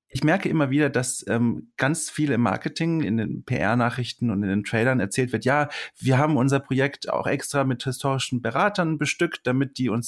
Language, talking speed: German, 195 wpm